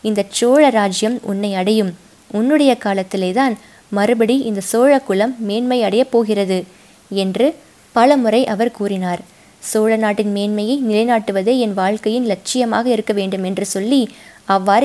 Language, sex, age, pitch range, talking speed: Tamil, female, 20-39, 200-240 Hz, 125 wpm